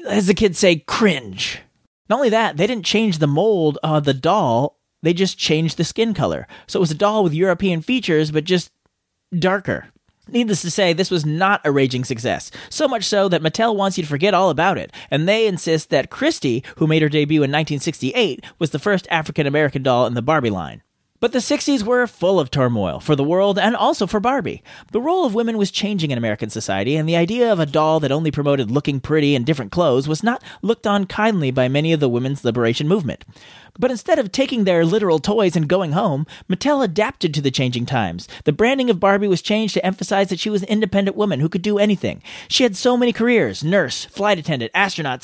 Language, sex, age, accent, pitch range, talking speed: English, male, 30-49, American, 150-215 Hz, 220 wpm